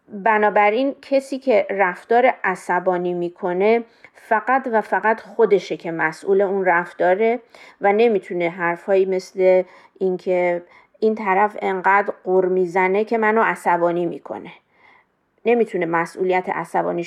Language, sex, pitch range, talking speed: Persian, female, 180-225 Hz, 110 wpm